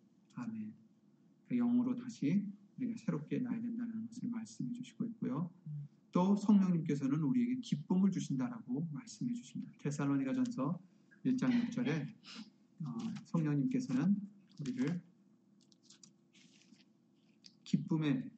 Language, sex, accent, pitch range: Korean, male, native, 175-235 Hz